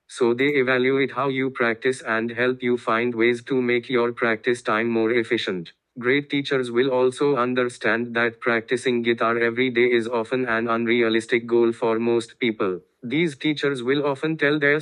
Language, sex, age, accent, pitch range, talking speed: English, male, 20-39, Indian, 115-130 Hz, 170 wpm